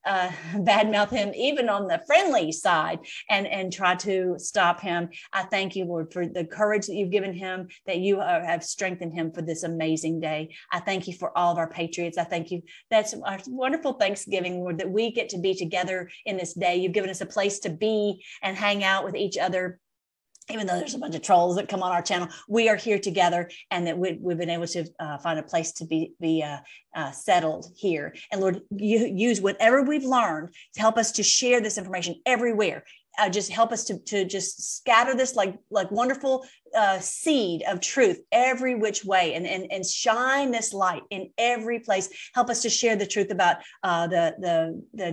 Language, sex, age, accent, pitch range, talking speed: English, female, 40-59, American, 170-205 Hz, 215 wpm